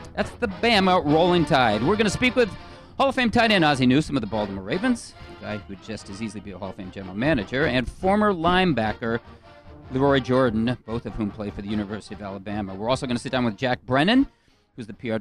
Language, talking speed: English, 240 wpm